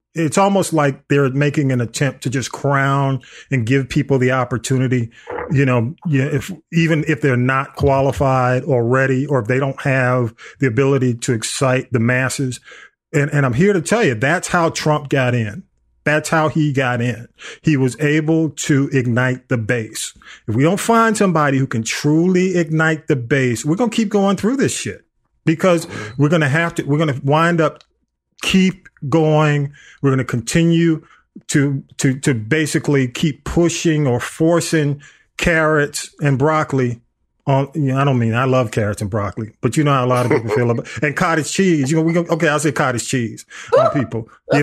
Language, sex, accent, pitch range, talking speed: English, male, American, 130-175 Hz, 190 wpm